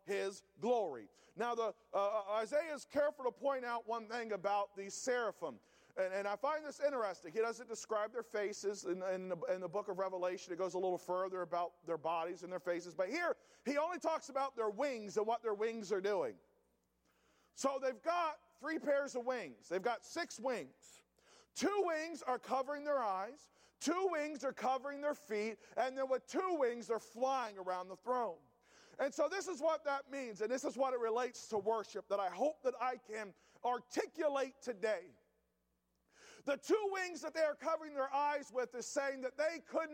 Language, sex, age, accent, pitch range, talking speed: English, male, 40-59, American, 220-325 Hz, 195 wpm